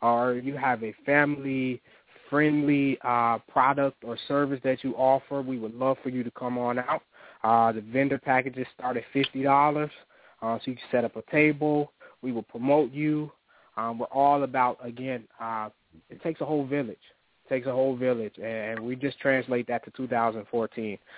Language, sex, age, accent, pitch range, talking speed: English, male, 20-39, American, 115-145 Hz, 175 wpm